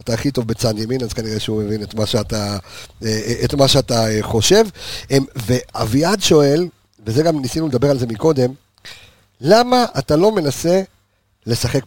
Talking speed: 150 wpm